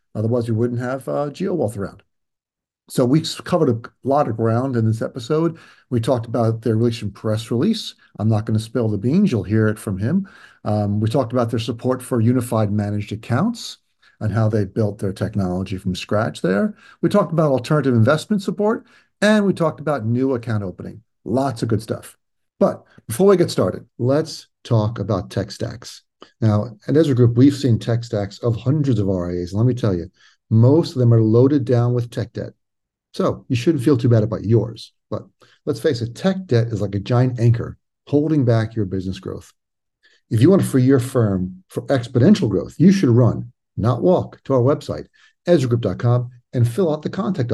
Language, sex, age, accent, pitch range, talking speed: English, male, 50-69, American, 110-140 Hz, 195 wpm